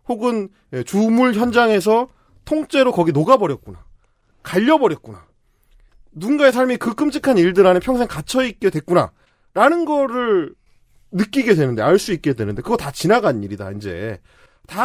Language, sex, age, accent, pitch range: Korean, male, 30-49, native, 180-290 Hz